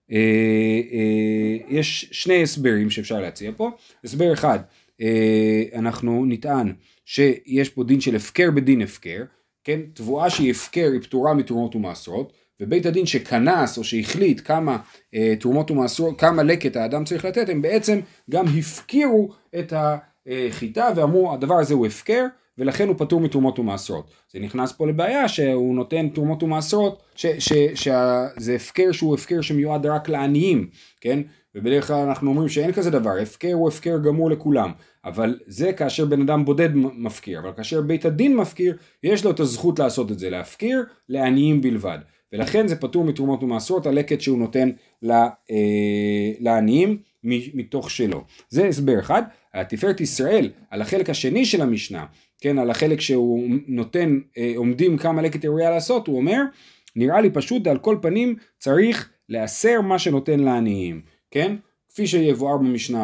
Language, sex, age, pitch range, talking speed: Hebrew, male, 30-49, 120-170 Hz, 150 wpm